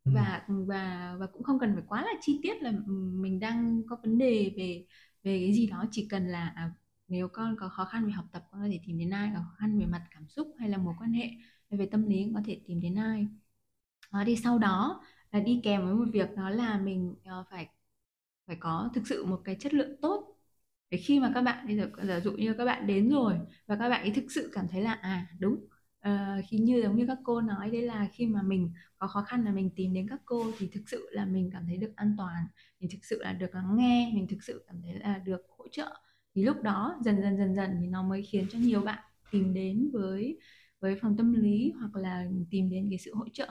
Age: 20-39